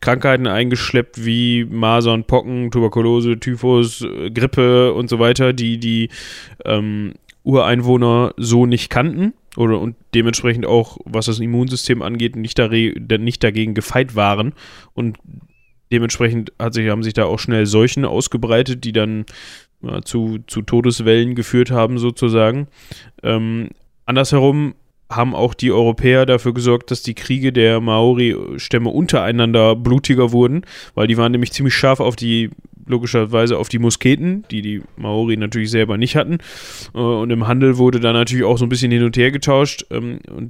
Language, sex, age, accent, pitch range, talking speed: German, male, 10-29, German, 115-125 Hz, 155 wpm